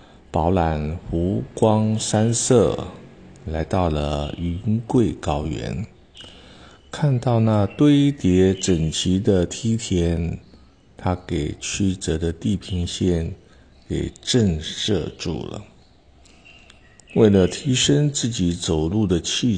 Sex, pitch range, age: male, 80-105 Hz, 50-69